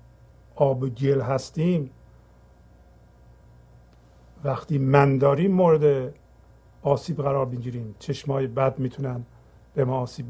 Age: 50-69